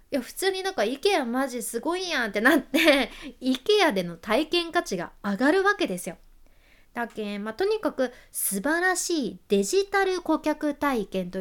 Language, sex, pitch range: Japanese, female, 215-320 Hz